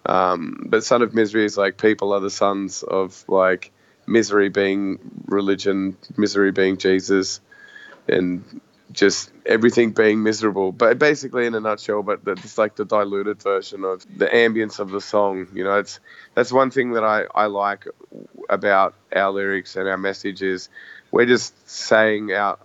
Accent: Australian